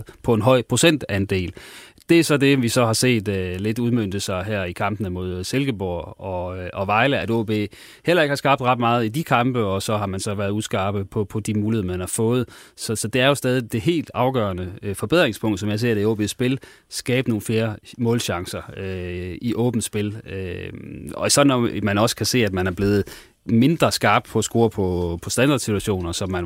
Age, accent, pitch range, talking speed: 30-49, native, 100-120 Hz, 215 wpm